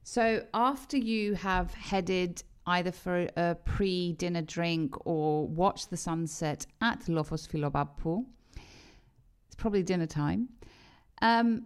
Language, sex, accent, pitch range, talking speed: Greek, female, British, 145-190 Hz, 115 wpm